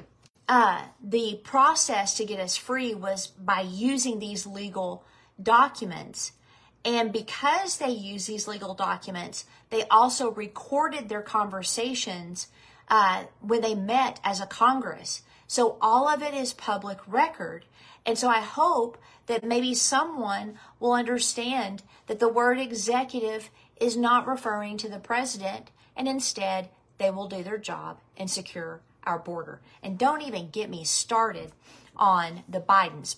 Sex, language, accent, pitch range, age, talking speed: female, English, American, 195-245 Hz, 40-59, 140 wpm